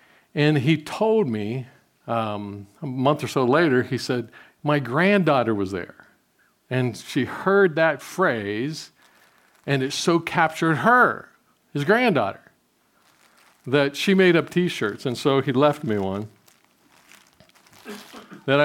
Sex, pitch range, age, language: male, 125-165 Hz, 50-69, English